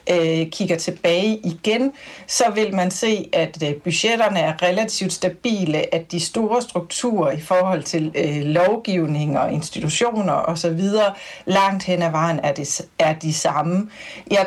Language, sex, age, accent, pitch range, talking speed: Danish, female, 60-79, native, 170-220 Hz, 135 wpm